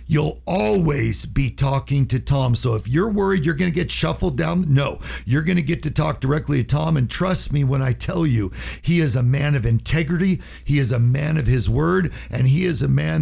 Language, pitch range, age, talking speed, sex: English, 115-155 Hz, 50-69, 230 wpm, male